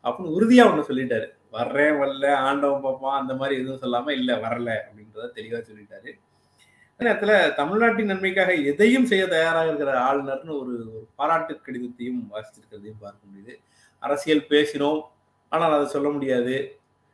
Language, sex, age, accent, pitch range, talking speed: Tamil, male, 20-39, native, 115-150 Hz, 135 wpm